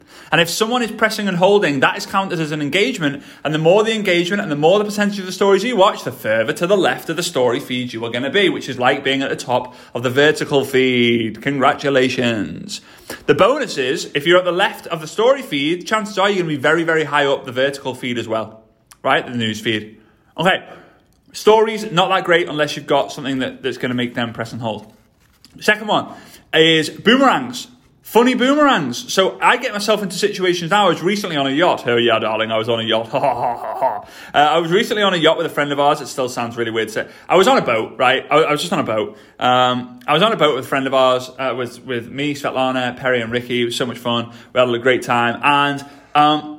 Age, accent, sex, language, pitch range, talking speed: 30-49, British, male, English, 125-190 Hz, 250 wpm